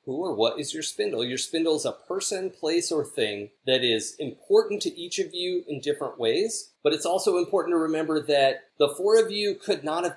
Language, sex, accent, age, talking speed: English, male, American, 40-59, 225 wpm